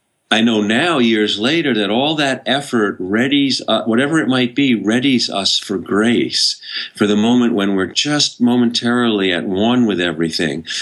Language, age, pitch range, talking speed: English, 50-69, 105-125 Hz, 160 wpm